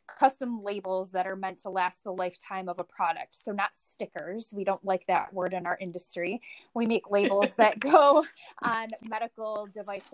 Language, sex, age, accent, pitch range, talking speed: English, female, 20-39, American, 195-220 Hz, 185 wpm